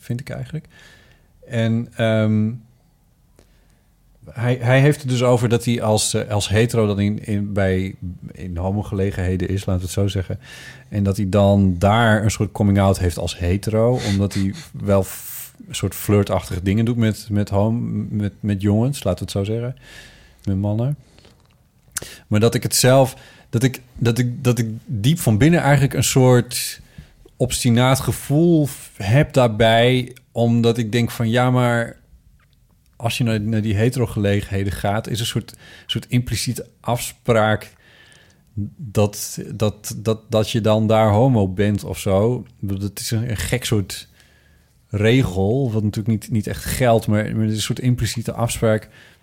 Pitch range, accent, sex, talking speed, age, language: 100-120 Hz, Dutch, male, 160 wpm, 40-59, Dutch